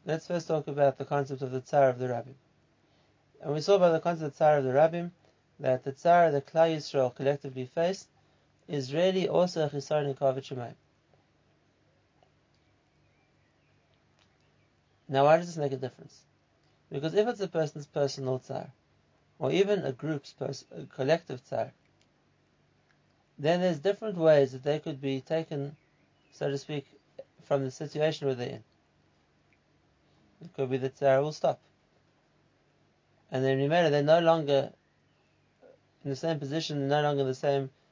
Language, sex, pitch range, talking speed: English, male, 135-160 Hz, 160 wpm